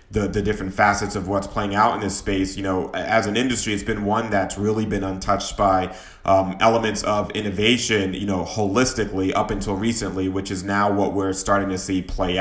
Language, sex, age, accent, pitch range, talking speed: English, male, 30-49, American, 100-110 Hz, 210 wpm